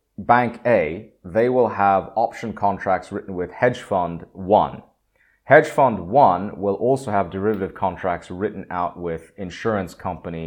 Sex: male